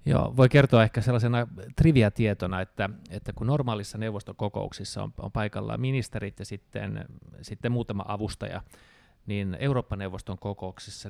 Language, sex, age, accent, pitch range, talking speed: Finnish, male, 20-39, native, 100-115 Hz, 130 wpm